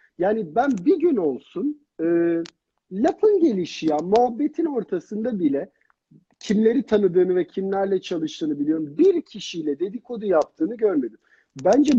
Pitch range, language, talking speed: 165-245 Hz, Turkish, 115 wpm